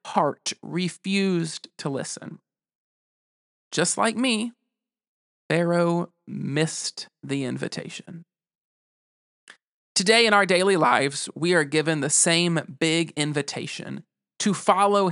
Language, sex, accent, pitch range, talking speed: English, male, American, 170-225 Hz, 100 wpm